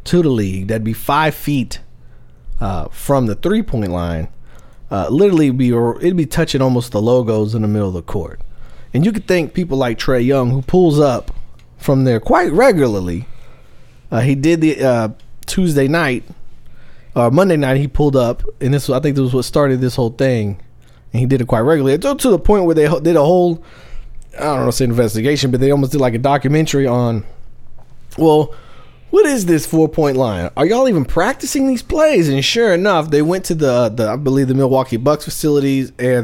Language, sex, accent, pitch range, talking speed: English, male, American, 115-155 Hz, 200 wpm